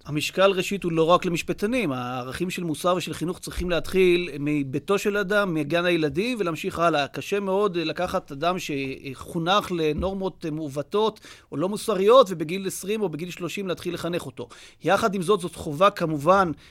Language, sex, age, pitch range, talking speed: Hebrew, male, 30-49, 165-200 Hz, 160 wpm